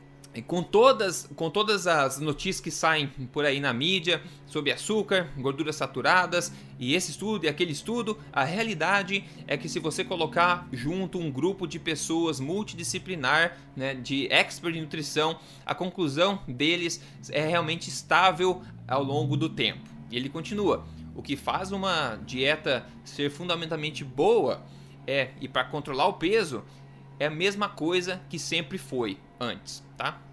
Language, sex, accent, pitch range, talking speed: Portuguese, male, Brazilian, 140-185 Hz, 145 wpm